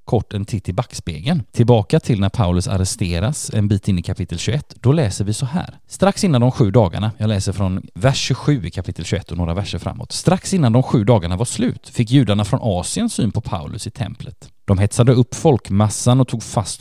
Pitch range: 100-130 Hz